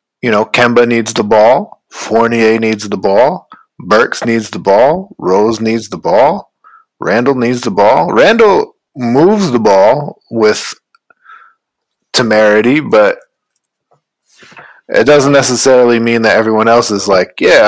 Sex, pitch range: male, 105-120 Hz